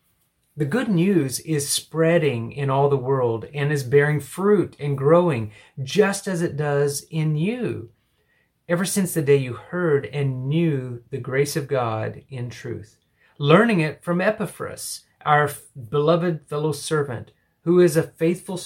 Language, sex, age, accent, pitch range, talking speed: English, male, 30-49, American, 130-170 Hz, 150 wpm